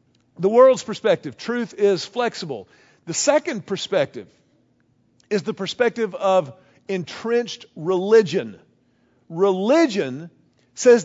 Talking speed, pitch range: 90 wpm, 180-230 Hz